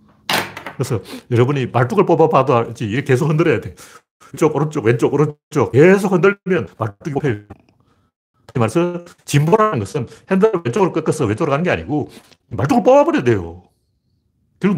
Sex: male